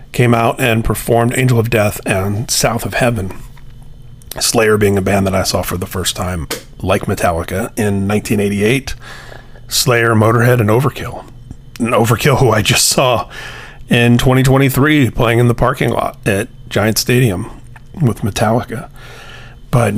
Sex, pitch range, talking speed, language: male, 105-125 Hz, 145 wpm, English